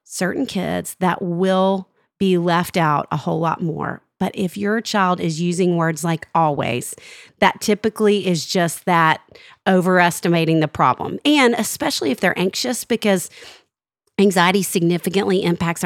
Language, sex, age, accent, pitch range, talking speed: English, female, 40-59, American, 170-215 Hz, 140 wpm